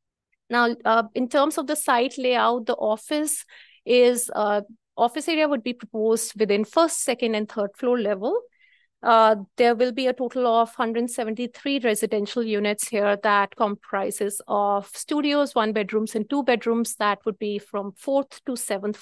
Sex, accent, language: female, Indian, English